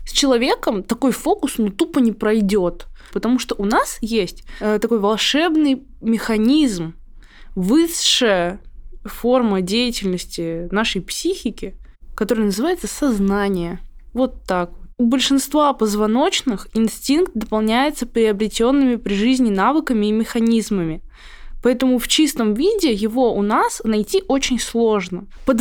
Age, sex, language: 20-39, female, Russian